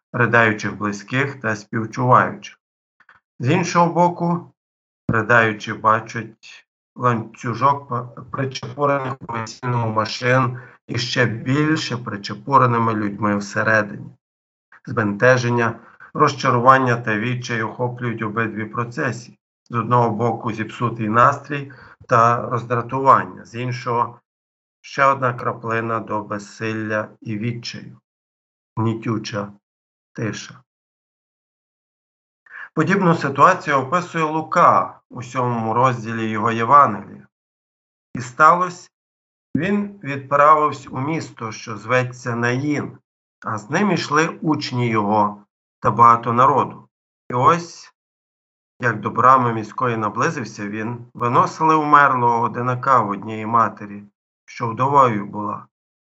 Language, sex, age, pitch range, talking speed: Ukrainian, male, 50-69, 110-135 Hz, 95 wpm